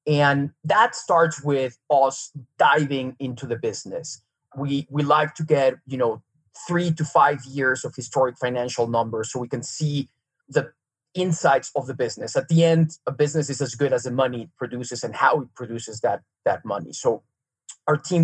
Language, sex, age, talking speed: English, male, 30-49, 185 wpm